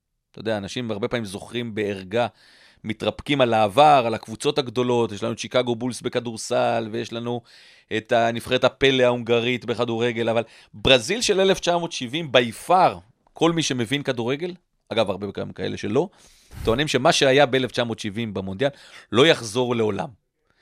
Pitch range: 100-125 Hz